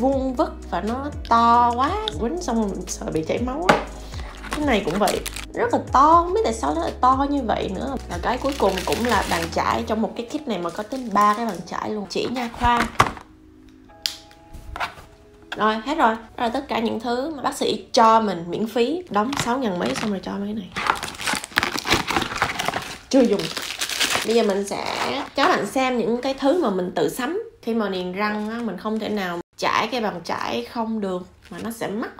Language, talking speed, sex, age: Vietnamese, 210 wpm, female, 20-39